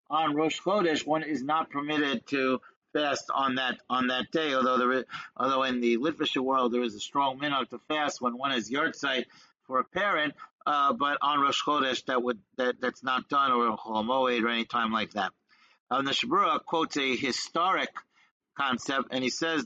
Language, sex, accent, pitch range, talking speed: English, male, American, 125-155 Hz, 195 wpm